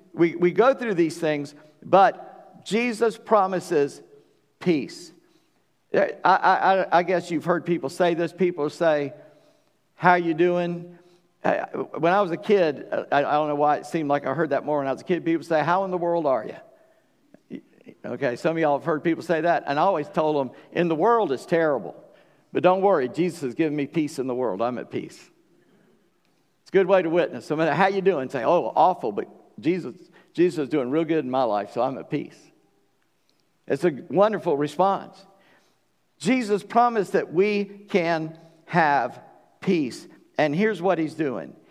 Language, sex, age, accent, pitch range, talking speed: English, male, 50-69, American, 150-190 Hz, 185 wpm